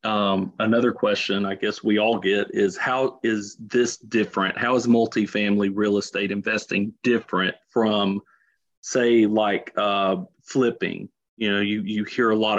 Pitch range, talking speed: 100-120 Hz, 155 wpm